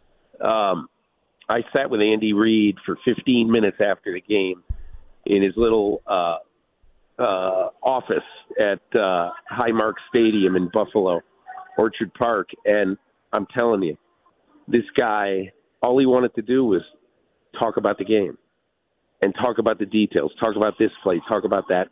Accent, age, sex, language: American, 50-69, male, English